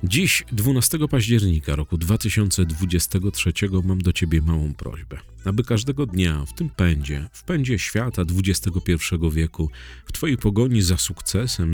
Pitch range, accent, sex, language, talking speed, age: 85-110 Hz, native, male, Polish, 135 wpm, 40-59